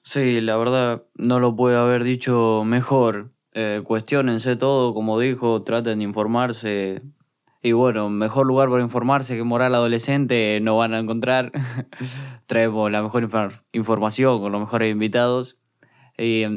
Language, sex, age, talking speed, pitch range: Spanish, male, 20-39, 150 wpm, 110-125 Hz